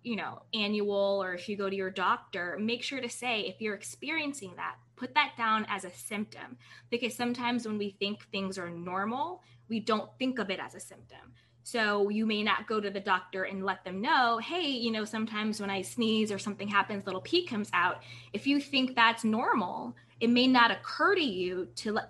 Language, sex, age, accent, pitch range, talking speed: English, female, 20-39, American, 185-225 Hz, 215 wpm